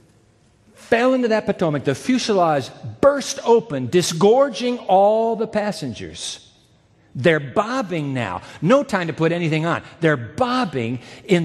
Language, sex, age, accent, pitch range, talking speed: English, male, 50-69, American, 140-190 Hz, 125 wpm